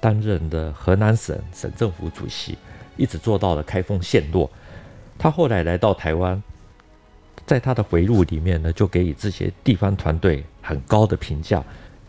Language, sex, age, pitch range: Chinese, male, 50-69, 85-110 Hz